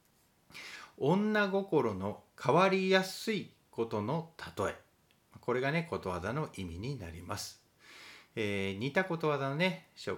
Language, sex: Japanese, male